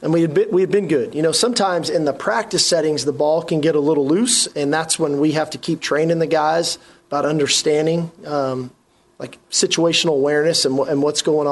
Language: English